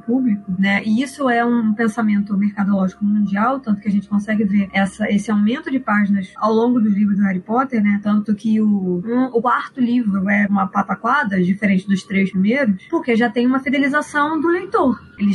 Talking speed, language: 195 wpm, Portuguese